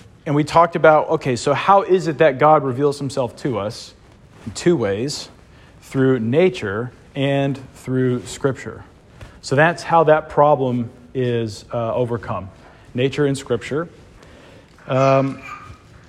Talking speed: 130 wpm